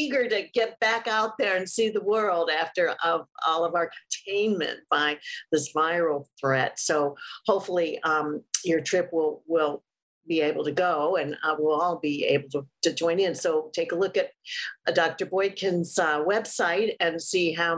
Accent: American